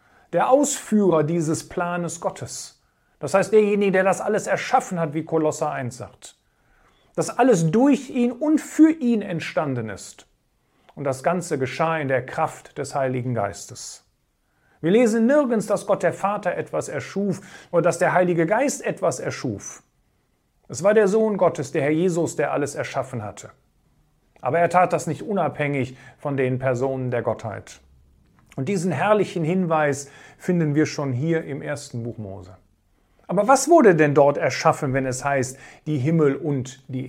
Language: German